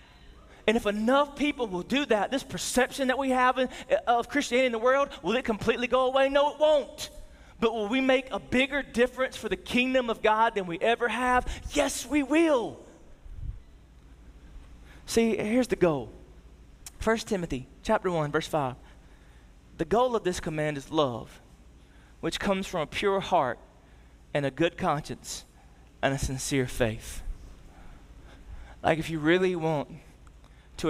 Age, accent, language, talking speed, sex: 20-39, American, English, 160 wpm, male